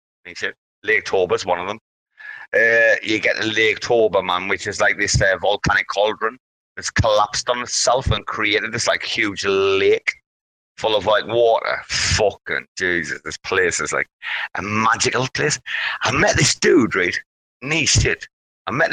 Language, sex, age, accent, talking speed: English, male, 30-49, British, 155 wpm